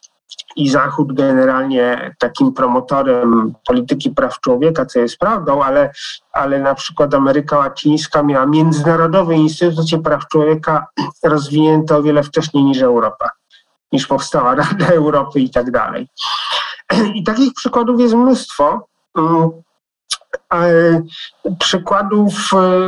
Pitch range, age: 150-180 Hz, 50-69